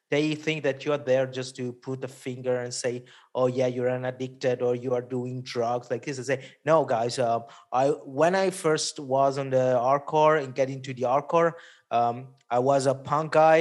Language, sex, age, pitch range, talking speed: English, male, 30-49, 130-155 Hz, 215 wpm